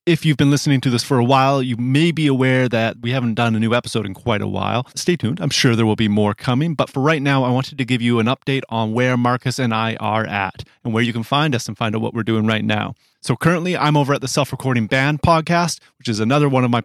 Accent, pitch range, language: American, 115-135 Hz, English